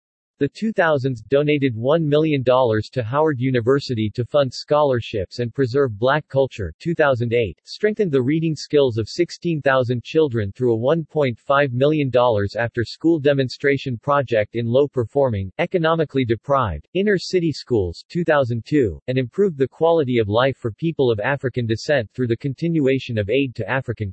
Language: English